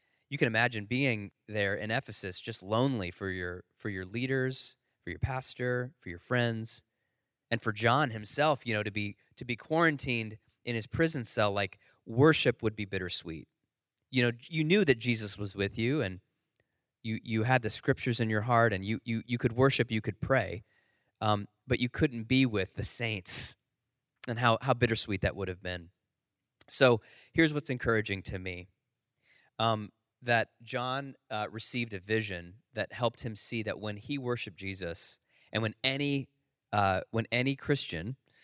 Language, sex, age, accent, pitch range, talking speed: English, male, 20-39, American, 105-130 Hz, 175 wpm